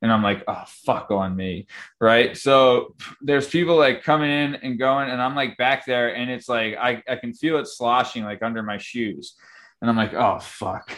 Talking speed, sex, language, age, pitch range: 215 wpm, male, English, 20-39, 120-145 Hz